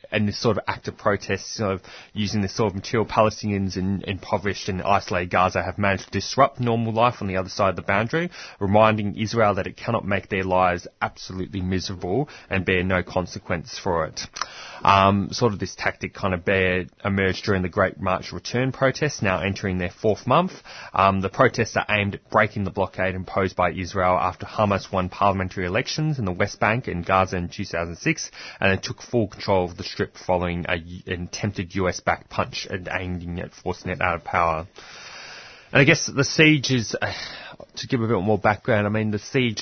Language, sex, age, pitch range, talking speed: English, male, 20-39, 95-110 Hz, 200 wpm